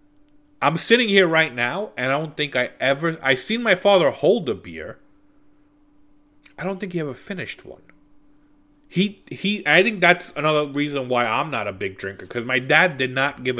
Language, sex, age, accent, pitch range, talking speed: English, male, 30-49, American, 120-175 Hz, 195 wpm